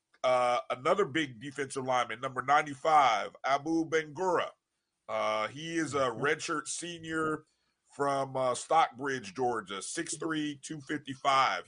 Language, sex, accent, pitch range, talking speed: English, male, American, 130-160 Hz, 110 wpm